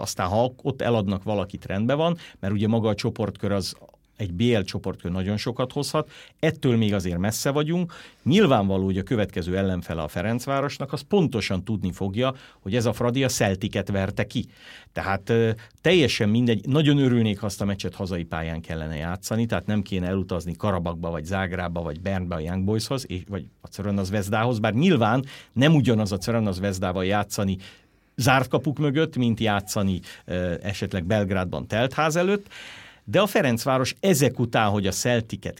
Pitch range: 95-130 Hz